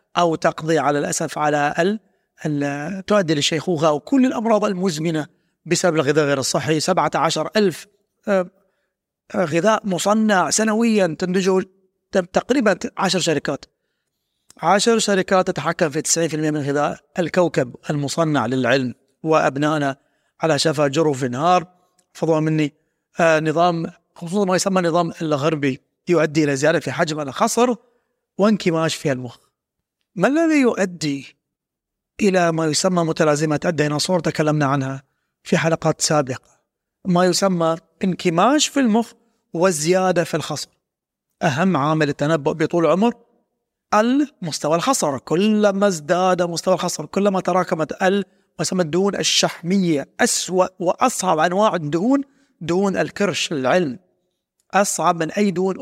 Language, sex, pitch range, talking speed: Arabic, male, 155-200 Hz, 110 wpm